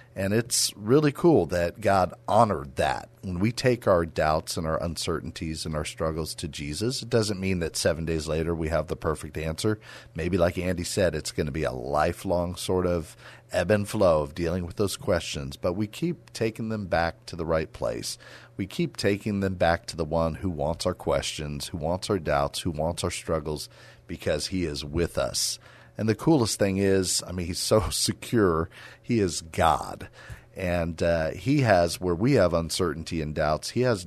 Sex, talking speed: male, 200 wpm